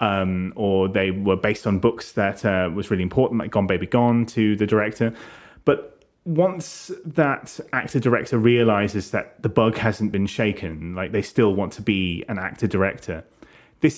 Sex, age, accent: male, 30-49, British